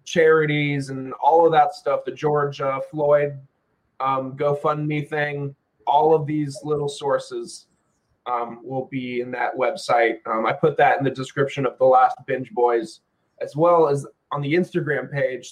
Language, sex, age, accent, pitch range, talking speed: English, male, 20-39, American, 125-150 Hz, 160 wpm